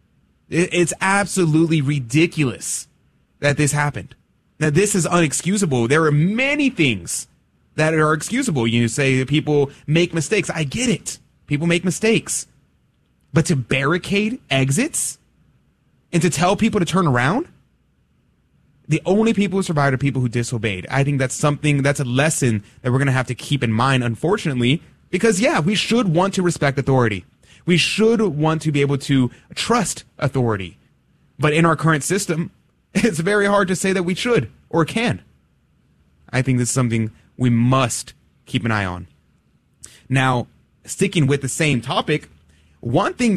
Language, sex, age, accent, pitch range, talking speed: English, male, 30-49, American, 130-185 Hz, 160 wpm